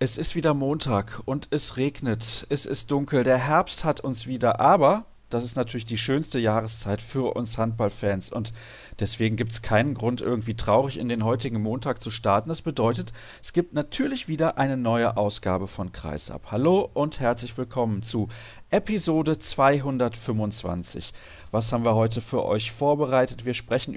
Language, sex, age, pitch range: German, male, 40-59, 110-135 Hz